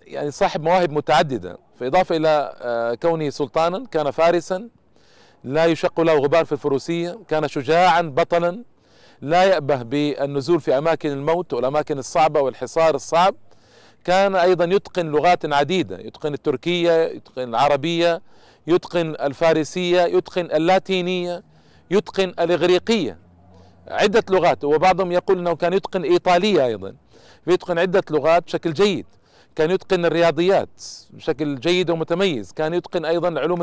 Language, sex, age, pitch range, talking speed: Arabic, male, 40-59, 150-185 Hz, 120 wpm